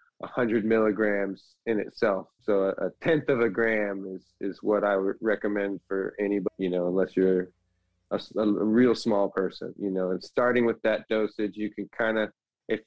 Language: English